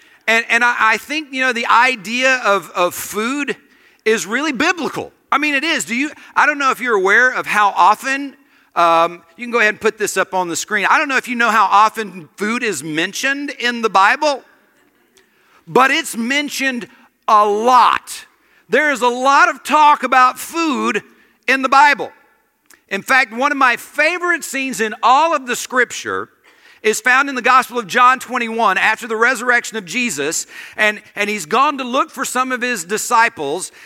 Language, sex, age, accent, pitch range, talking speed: English, male, 50-69, American, 225-290 Hz, 190 wpm